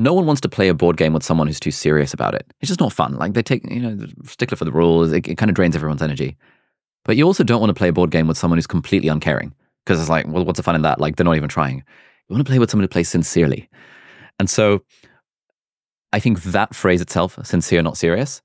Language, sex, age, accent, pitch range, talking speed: English, male, 20-39, British, 80-100 Hz, 275 wpm